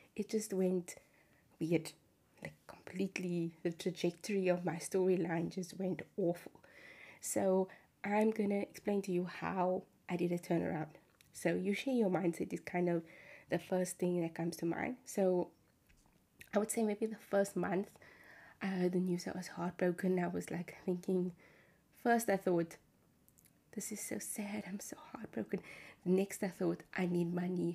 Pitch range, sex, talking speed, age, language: 175-200 Hz, female, 165 wpm, 20-39, English